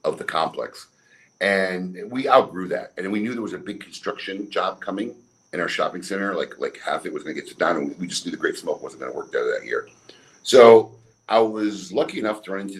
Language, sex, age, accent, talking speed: English, male, 50-69, American, 245 wpm